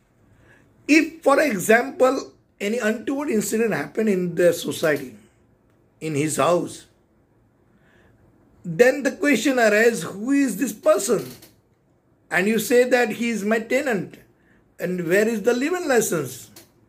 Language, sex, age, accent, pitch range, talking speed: Hindi, male, 60-79, native, 170-230 Hz, 130 wpm